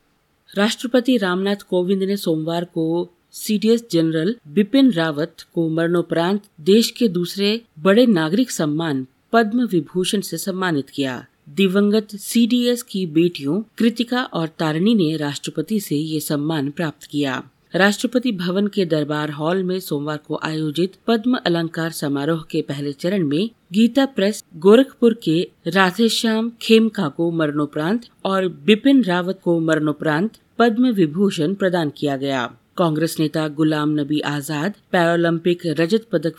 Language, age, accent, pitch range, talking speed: Hindi, 50-69, native, 160-210 Hz, 130 wpm